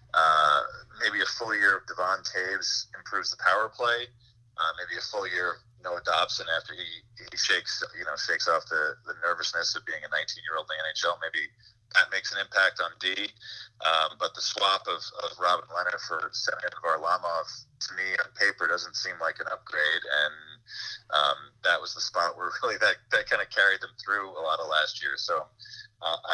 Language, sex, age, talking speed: English, male, 30-49, 205 wpm